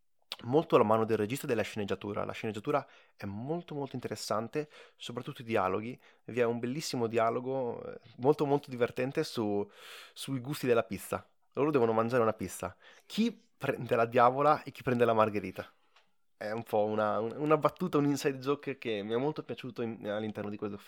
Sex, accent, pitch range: male, native, 110-140 Hz